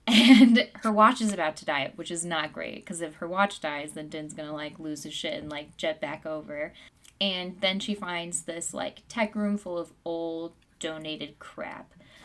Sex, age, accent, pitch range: female, 10-29, American, 165-210 Hz